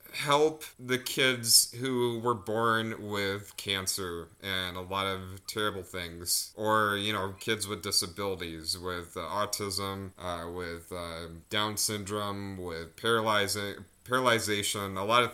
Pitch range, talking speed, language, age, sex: 95-120 Hz, 135 wpm, English, 30-49, male